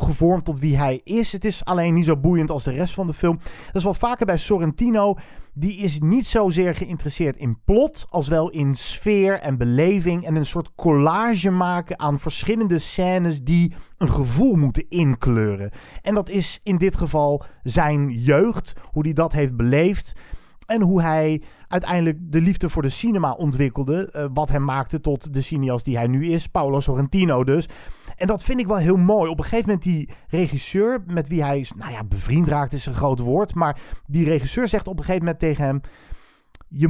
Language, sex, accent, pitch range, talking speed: Dutch, male, Dutch, 140-185 Hz, 200 wpm